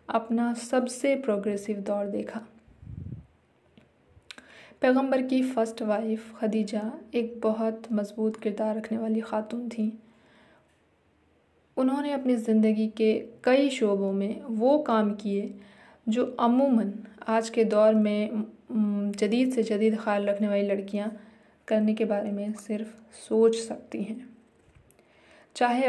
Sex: female